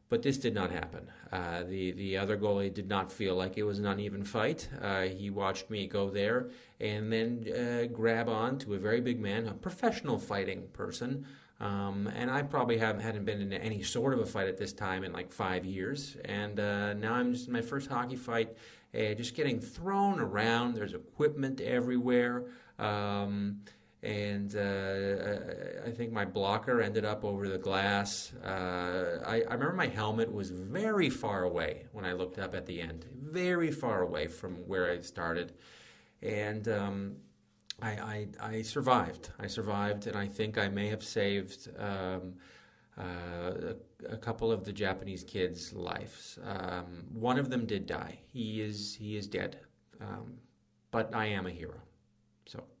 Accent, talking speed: American, 175 wpm